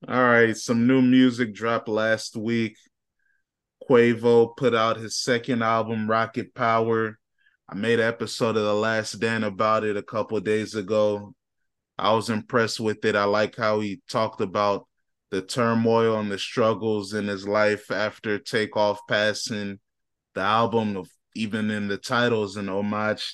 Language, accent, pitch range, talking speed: English, American, 105-125 Hz, 155 wpm